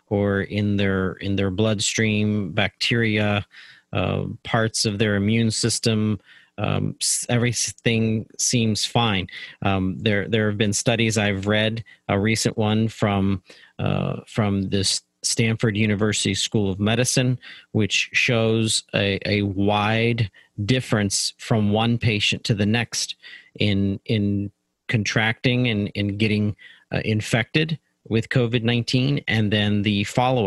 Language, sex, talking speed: English, male, 125 wpm